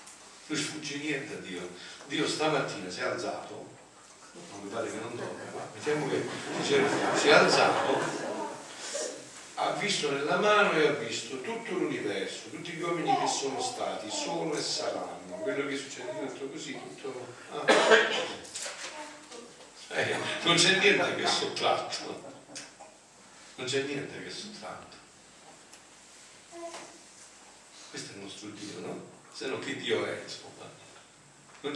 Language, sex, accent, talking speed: Italian, male, native, 140 wpm